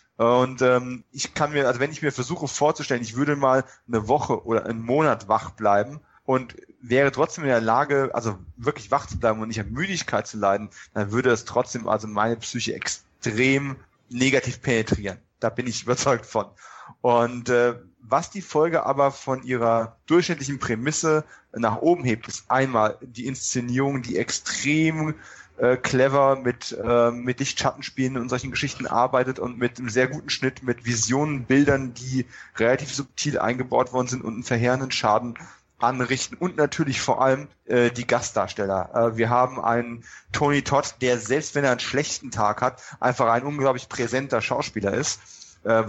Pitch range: 115-135 Hz